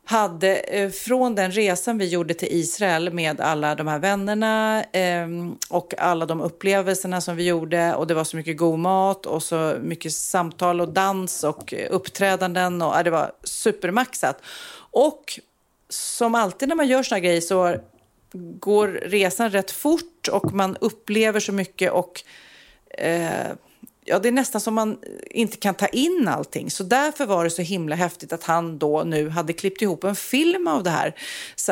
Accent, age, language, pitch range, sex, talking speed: native, 40-59, Swedish, 170-230 Hz, female, 170 wpm